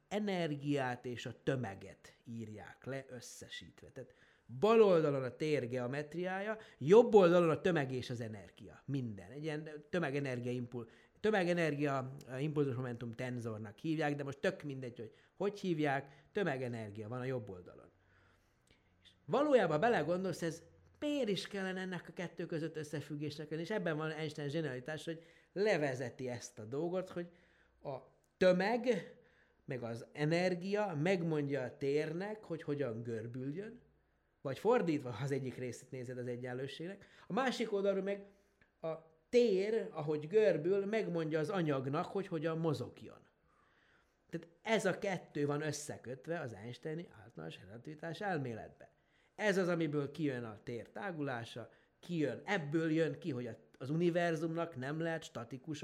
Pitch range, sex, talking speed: 130-180 Hz, male, 135 wpm